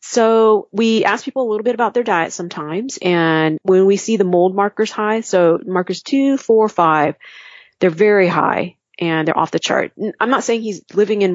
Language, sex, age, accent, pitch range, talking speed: English, female, 30-49, American, 160-205 Hz, 200 wpm